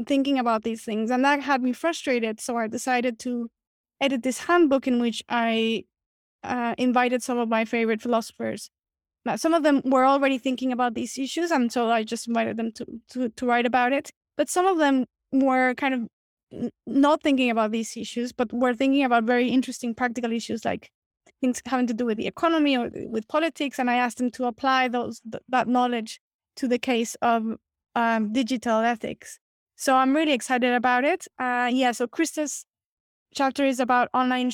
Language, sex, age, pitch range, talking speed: English, female, 20-39, 240-265 Hz, 195 wpm